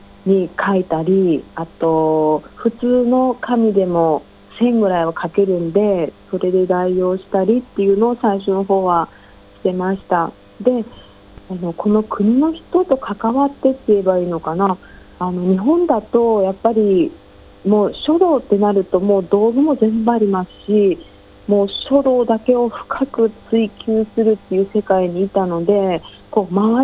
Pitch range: 180-245 Hz